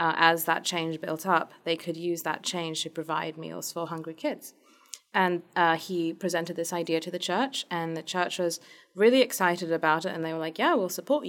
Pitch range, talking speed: 170-210 Hz, 220 wpm